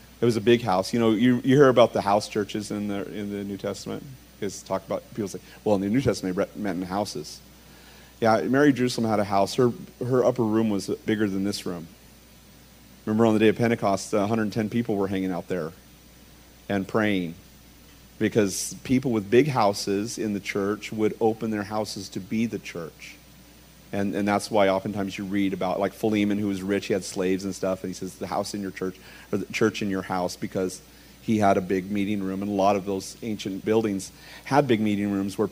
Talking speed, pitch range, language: 220 wpm, 95-110 Hz, English